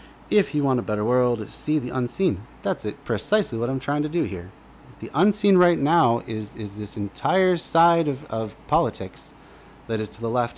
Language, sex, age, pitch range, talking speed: English, male, 30-49, 95-125 Hz, 200 wpm